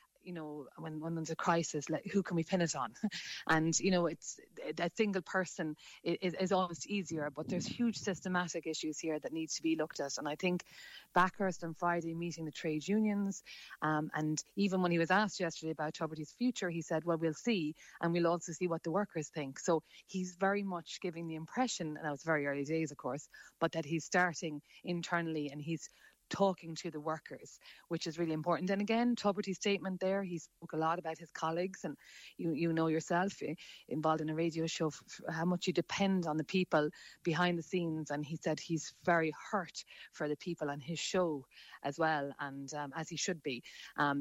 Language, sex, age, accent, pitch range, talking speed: English, female, 30-49, Irish, 155-180 Hz, 210 wpm